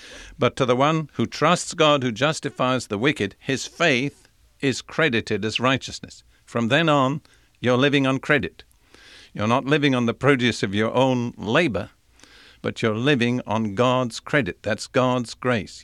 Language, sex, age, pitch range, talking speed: English, male, 50-69, 115-135 Hz, 165 wpm